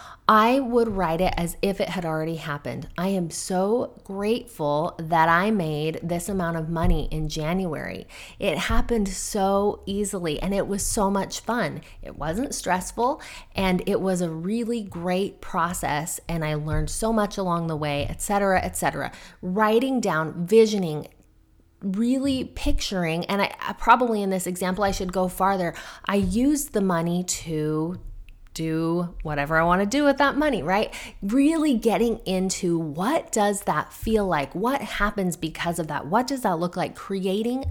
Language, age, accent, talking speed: English, 30-49, American, 165 wpm